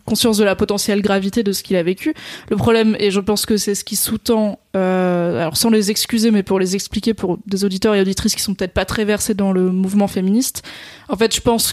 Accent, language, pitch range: French, French, 195-225 Hz